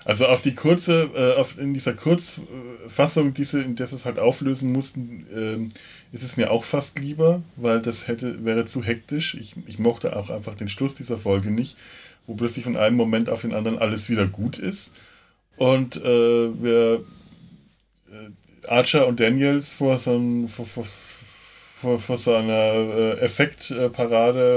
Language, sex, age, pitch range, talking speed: German, male, 20-39, 110-135 Hz, 165 wpm